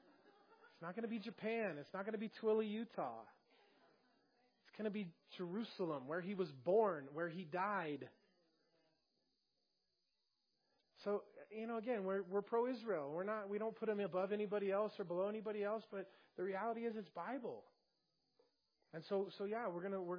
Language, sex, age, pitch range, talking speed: English, male, 30-49, 165-210 Hz, 175 wpm